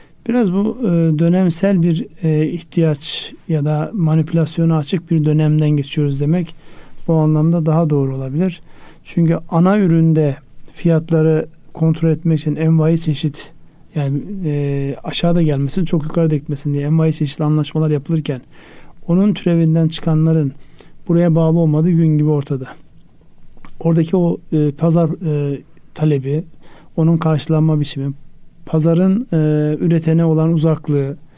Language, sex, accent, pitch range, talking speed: Turkish, male, native, 150-165 Hz, 120 wpm